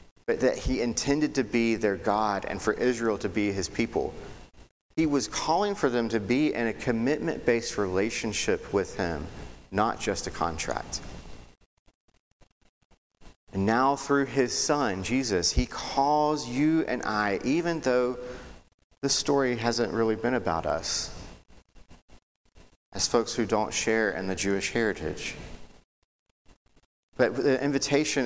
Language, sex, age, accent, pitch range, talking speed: English, male, 40-59, American, 95-140 Hz, 135 wpm